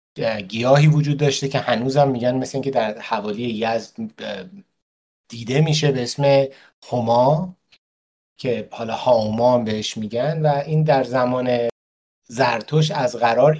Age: 30-49